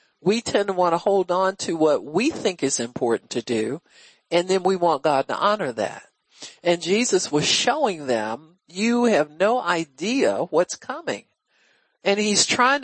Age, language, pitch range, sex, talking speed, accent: 50-69, English, 170-250 Hz, male, 175 wpm, American